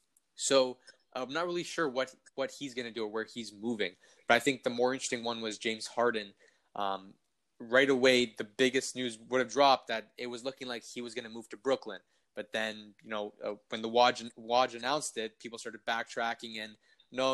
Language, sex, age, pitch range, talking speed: English, male, 20-39, 110-130 Hz, 215 wpm